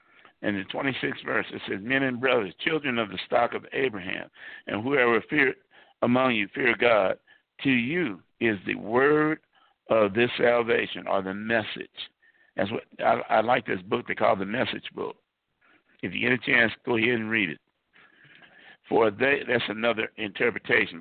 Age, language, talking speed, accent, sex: 60-79, English, 175 wpm, American, male